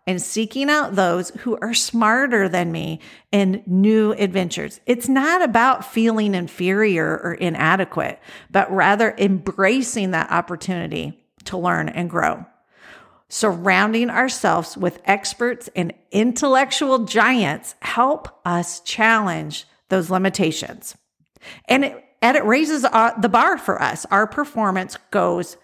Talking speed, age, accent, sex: 120 wpm, 50-69, American, female